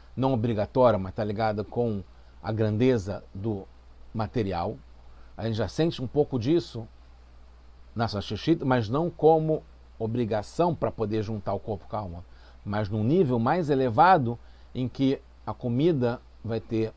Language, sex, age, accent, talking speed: English, male, 40-59, Brazilian, 150 wpm